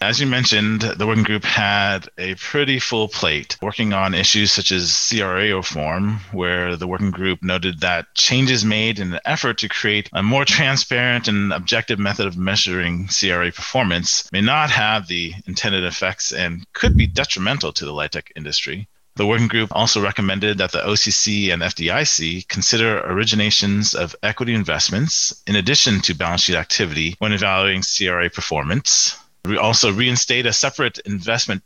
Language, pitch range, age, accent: English, 90-115 Hz, 30-49, American